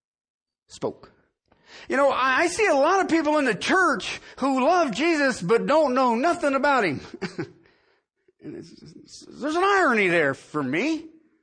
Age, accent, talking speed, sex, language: 40-59, American, 165 wpm, male, English